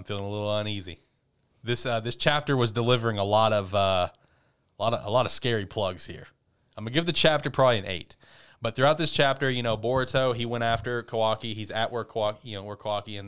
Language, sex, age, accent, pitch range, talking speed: English, male, 30-49, American, 105-130 Hz, 230 wpm